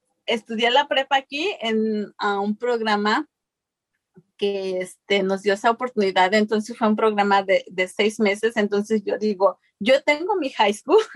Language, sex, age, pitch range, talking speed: Spanish, female, 30-49, 205-260 Hz, 160 wpm